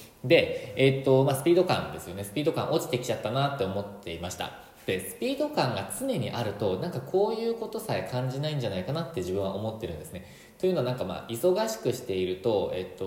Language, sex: Japanese, male